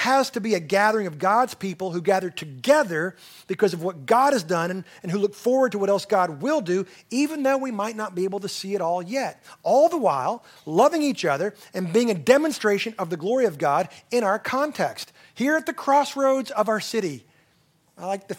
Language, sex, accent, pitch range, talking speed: English, male, American, 165-215 Hz, 225 wpm